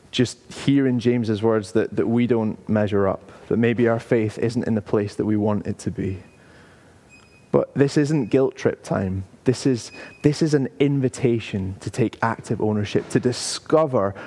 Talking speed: 180 wpm